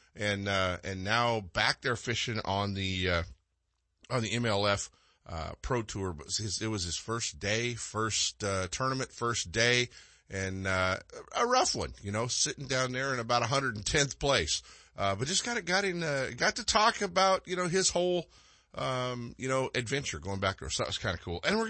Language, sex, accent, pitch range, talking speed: English, male, American, 100-135 Hz, 200 wpm